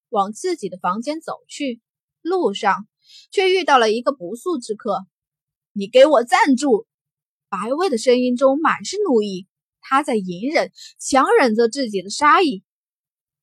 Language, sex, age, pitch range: Chinese, female, 20-39, 185-300 Hz